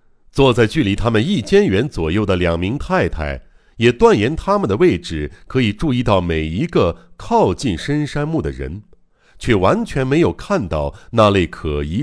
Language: Chinese